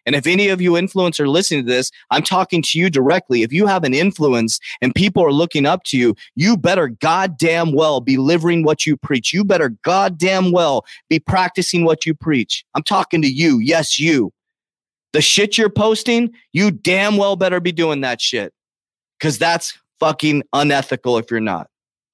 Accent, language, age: American, English, 30-49